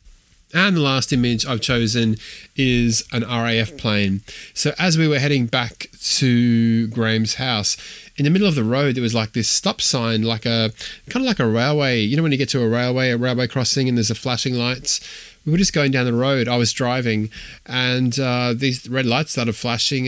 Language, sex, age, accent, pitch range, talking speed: English, male, 20-39, Australian, 115-145 Hz, 210 wpm